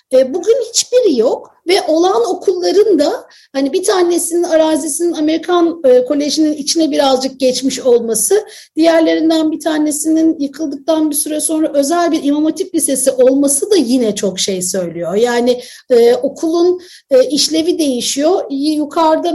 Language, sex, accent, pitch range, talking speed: Turkish, female, native, 265-345 Hz, 125 wpm